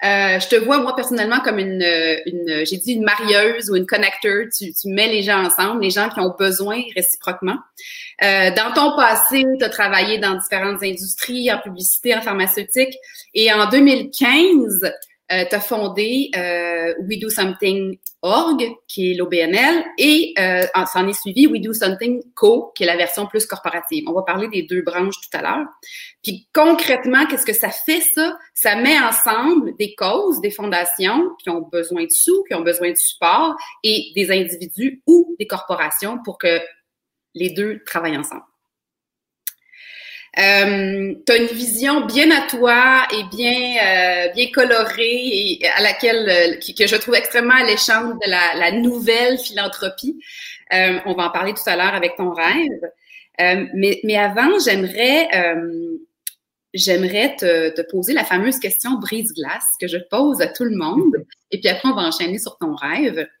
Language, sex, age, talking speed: French, female, 30-49, 180 wpm